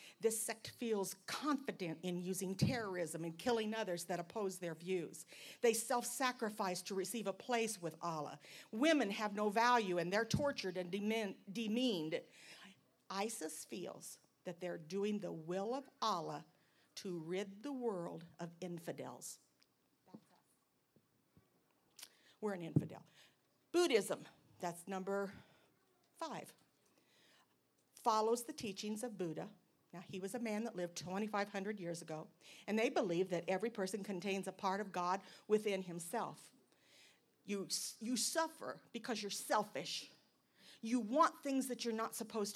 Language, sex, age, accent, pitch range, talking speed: English, female, 50-69, American, 180-225 Hz, 130 wpm